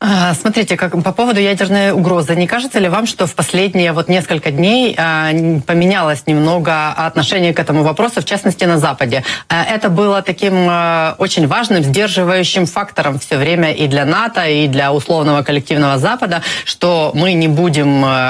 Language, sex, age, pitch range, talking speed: Ukrainian, female, 20-39, 145-185 Hz, 155 wpm